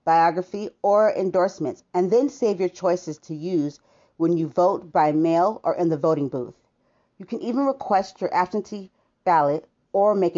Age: 40-59